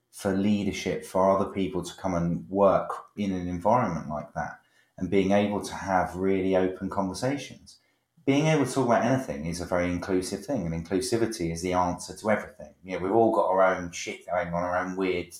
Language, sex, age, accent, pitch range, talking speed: English, male, 30-49, British, 90-110 Hz, 210 wpm